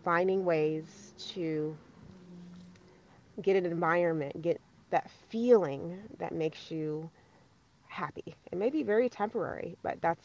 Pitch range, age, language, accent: 160-185 Hz, 30-49, English, American